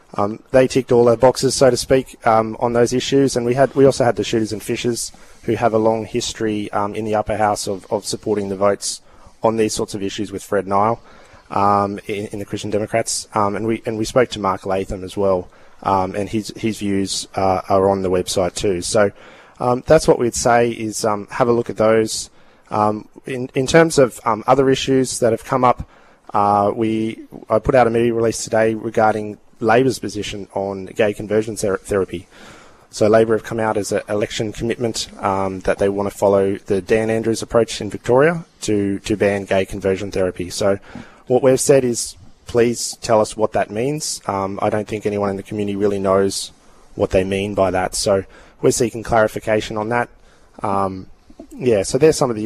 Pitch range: 100-115 Hz